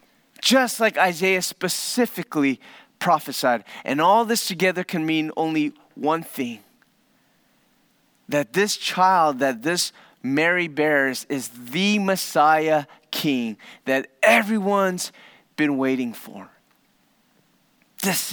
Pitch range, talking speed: 145-205 Hz, 100 wpm